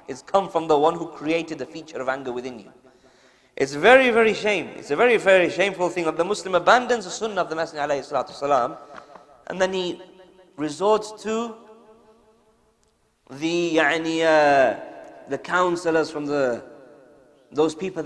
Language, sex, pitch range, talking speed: English, male, 155-215 Hz, 160 wpm